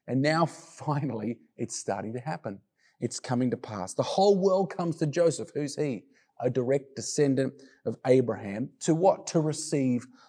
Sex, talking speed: male, 165 wpm